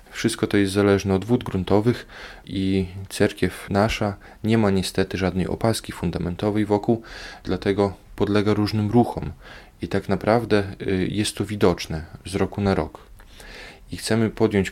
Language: Polish